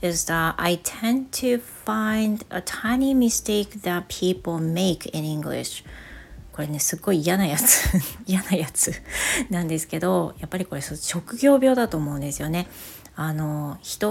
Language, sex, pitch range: Japanese, female, 155-200 Hz